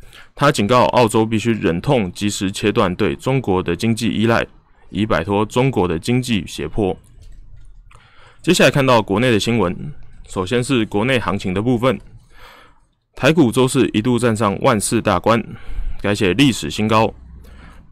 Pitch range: 95-125 Hz